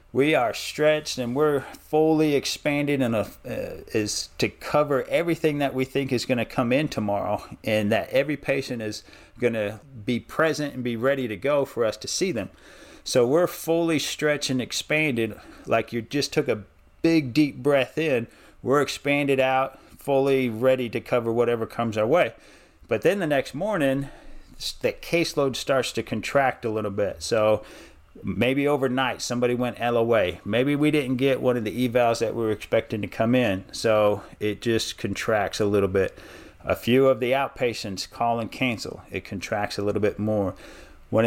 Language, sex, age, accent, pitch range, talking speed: English, male, 40-59, American, 110-140 Hz, 180 wpm